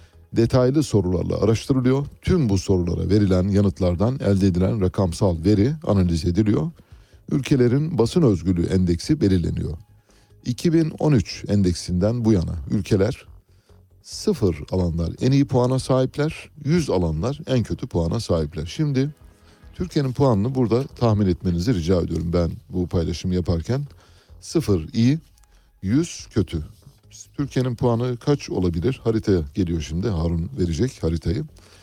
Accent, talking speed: native, 115 wpm